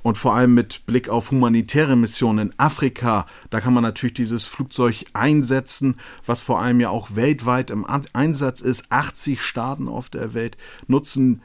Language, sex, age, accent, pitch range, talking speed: German, male, 40-59, German, 115-135 Hz, 170 wpm